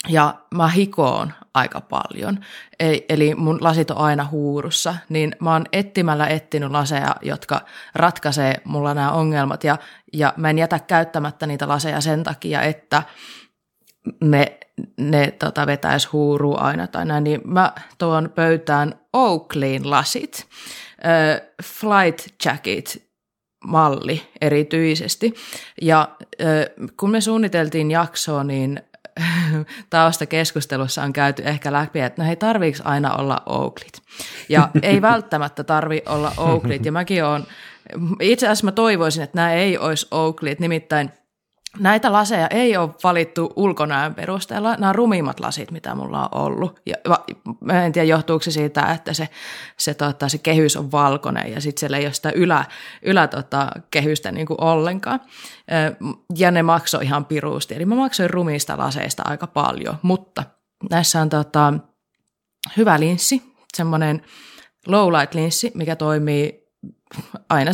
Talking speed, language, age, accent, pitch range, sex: 135 wpm, Finnish, 20-39, native, 150-175 Hz, female